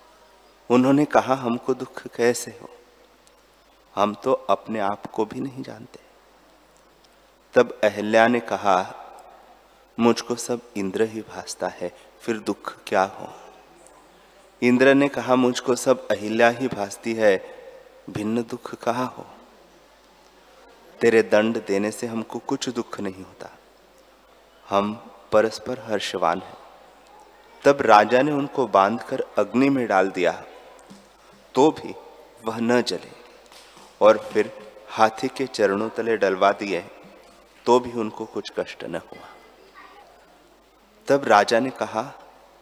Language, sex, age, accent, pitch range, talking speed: Hindi, male, 30-49, native, 110-130 Hz, 120 wpm